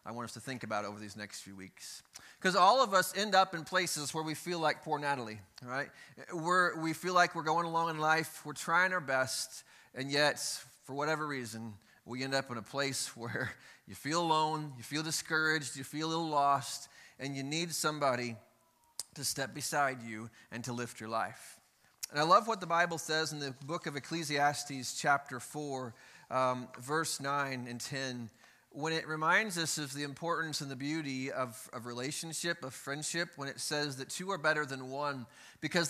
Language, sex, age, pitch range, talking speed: English, male, 30-49, 130-160 Hz, 195 wpm